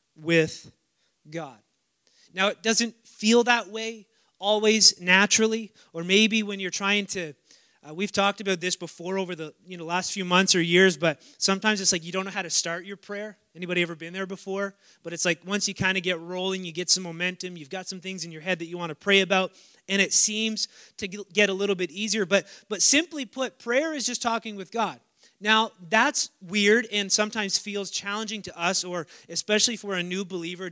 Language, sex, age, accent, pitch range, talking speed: English, male, 30-49, American, 175-205 Hz, 210 wpm